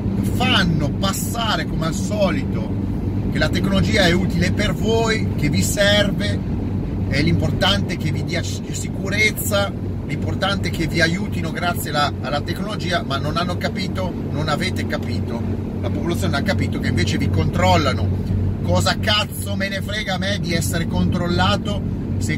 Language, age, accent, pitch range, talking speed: Italian, 40-59, native, 95-105 Hz, 145 wpm